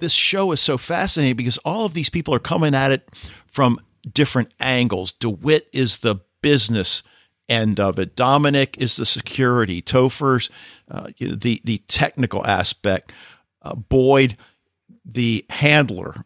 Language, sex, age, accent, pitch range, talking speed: English, male, 50-69, American, 115-145 Hz, 140 wpm